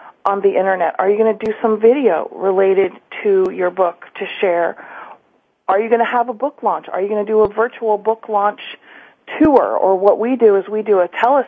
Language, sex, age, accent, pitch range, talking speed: English, female, 40-59, American, 195-240 Hz, 220 wpm